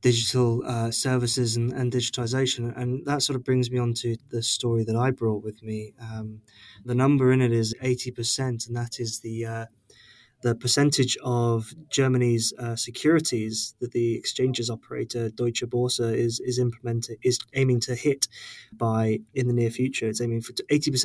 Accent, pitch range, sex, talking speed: British, 115-130 Hz, male, 170 wpm